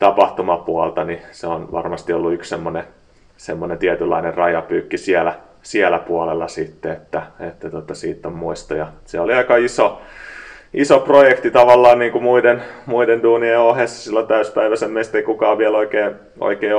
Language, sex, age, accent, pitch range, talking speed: Finnish, male, 30-49, native, 95-120 Hz, 155 wpm